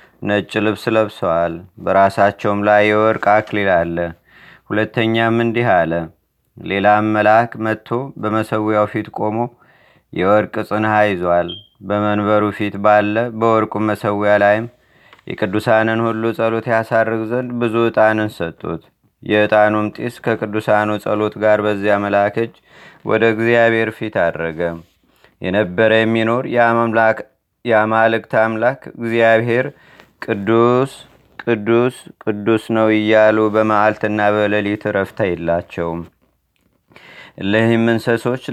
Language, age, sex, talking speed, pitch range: Amharic, 30-49, male, 95 wpm, 105-115 Hz